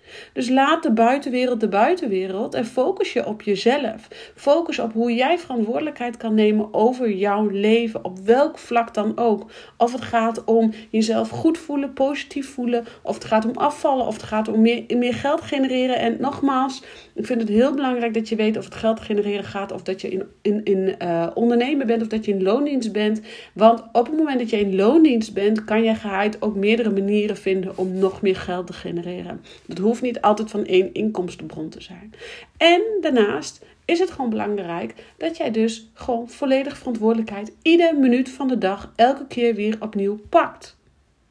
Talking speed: 190 wpm